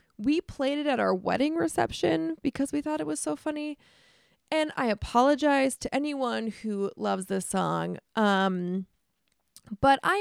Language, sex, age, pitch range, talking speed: English, female, 20-39, 200-280 Hz, 155 wpm